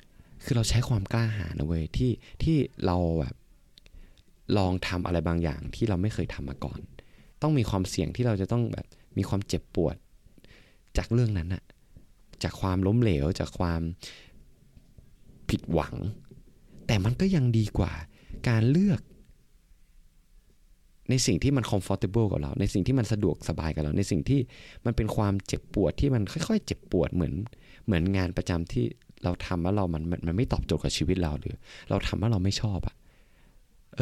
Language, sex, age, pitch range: Thai, male, 20-39, 85-120 Hz